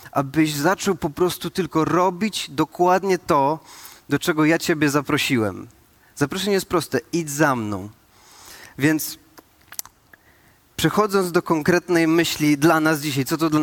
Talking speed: 130 wpm